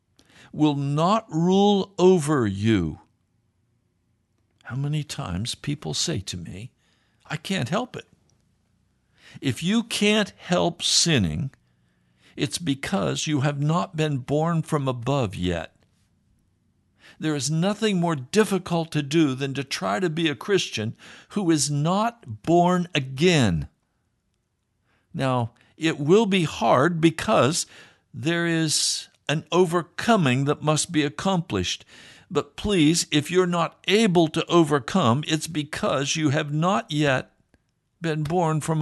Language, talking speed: English, 125 wpm